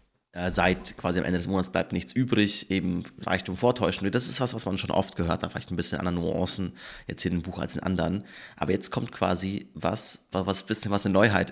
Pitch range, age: 85-100 Hz, 20-39